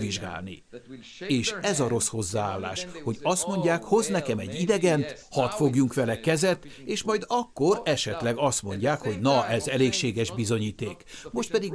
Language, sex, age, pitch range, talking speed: Hungarian, male, 60-79, 115-150 Hz, 155 wpm